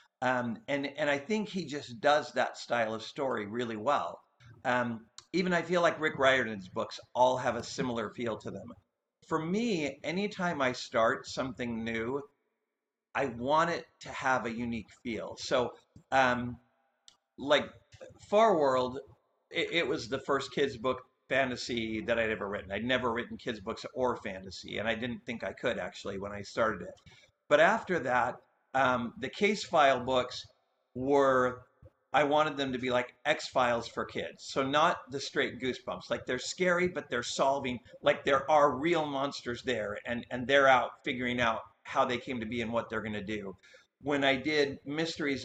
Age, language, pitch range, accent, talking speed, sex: 50-69, English, 120-145 Hz, American, 180 wpm, male